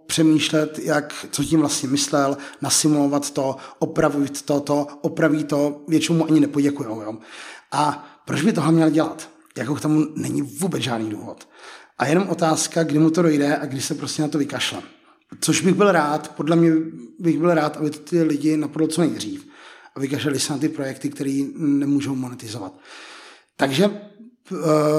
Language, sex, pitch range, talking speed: Czech, male, 145-165 Hz, 170 wpm